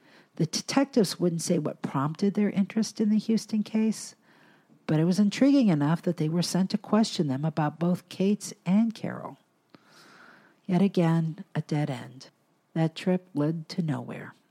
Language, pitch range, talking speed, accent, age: English, 155-195 Hz, 160 wpm, American, 50-69